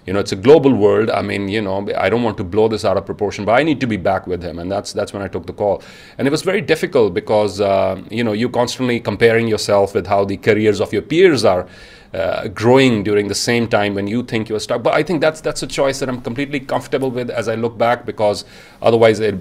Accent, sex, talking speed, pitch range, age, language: Indian, male, 265 wpm, 105-125 Hz, 30-49, English